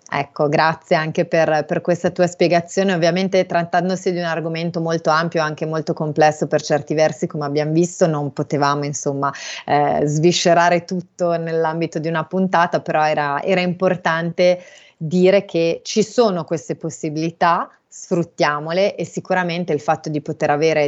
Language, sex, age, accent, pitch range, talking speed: Italian, female, 30-49, native, 155-180 Hz, 150 wpm